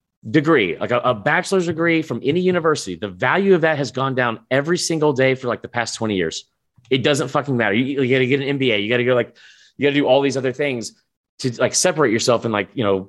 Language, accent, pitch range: English, American, 120-160 Hz